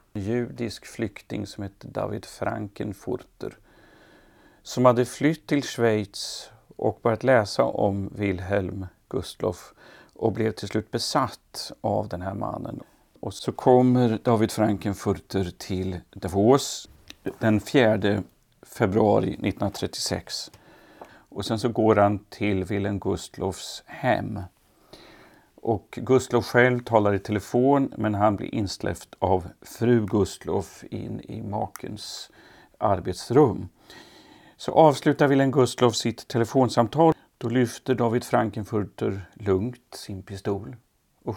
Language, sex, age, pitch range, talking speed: Swedish, male, 40-59, 100-125 Hz, 110 wpm